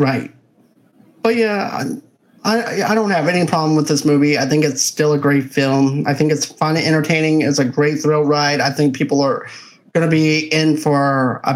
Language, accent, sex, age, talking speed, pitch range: English, American, male, 30-49, 210 wpm, 140-175 Hz